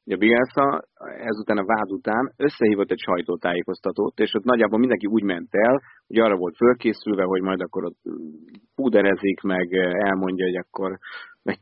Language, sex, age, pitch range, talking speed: Hungarian, male, 30-49, 100-120 Hz, 155 wpm